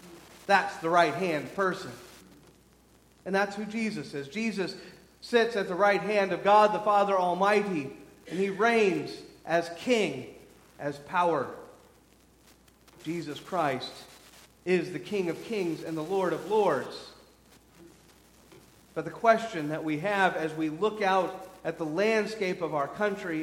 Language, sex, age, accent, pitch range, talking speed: English, male, 40-59, American, 150-200 Hz, 145 wpm